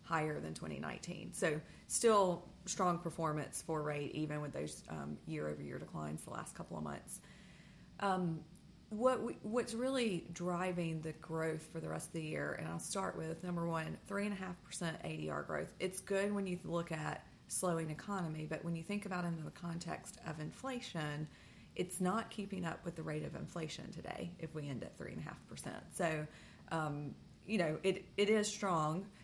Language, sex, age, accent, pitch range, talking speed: English, female, 30-49, American, 155-180 Hz, 175 wpm